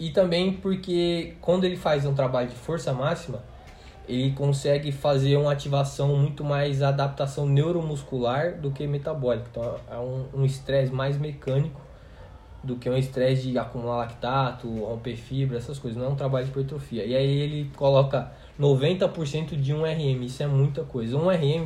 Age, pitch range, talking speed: 20-39, 130-165 Hz, 170 wpm